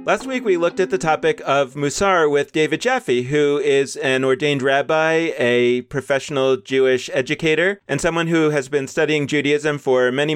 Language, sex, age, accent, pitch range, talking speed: English, male, 30-49, American, 135-175 Hz, 175 wpm